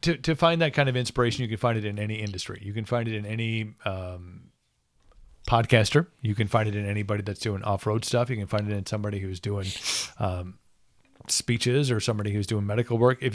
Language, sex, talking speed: English, male, 220 wpm